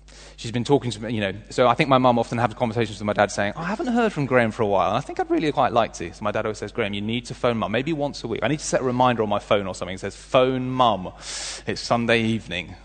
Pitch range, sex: 100-130 Hz, male